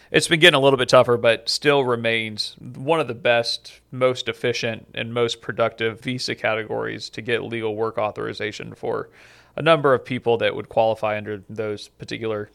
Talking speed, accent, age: 175 wpm, American, 30-49